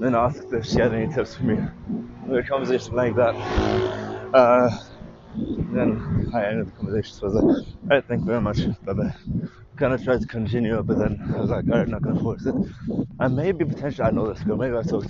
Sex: male